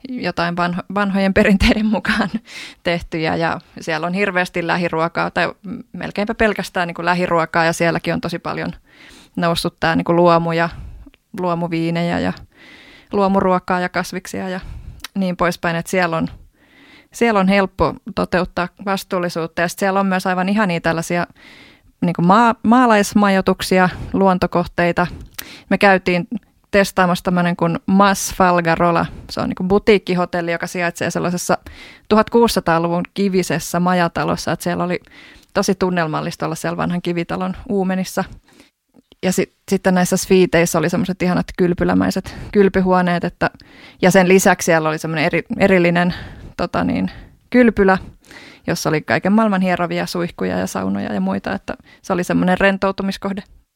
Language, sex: Finnish, female